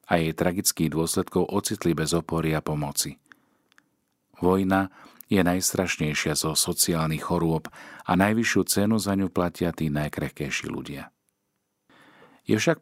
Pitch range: 80-95 Hz